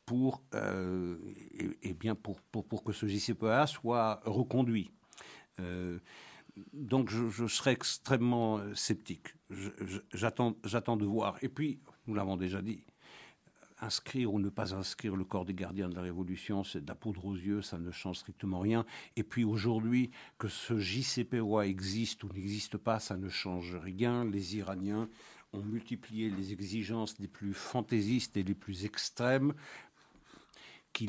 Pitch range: 95-115 Hz